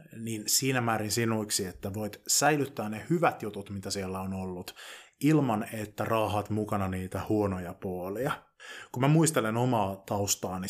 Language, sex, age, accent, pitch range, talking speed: Finnish, male, 20-39, native, 100-125 Hz, 145 wpm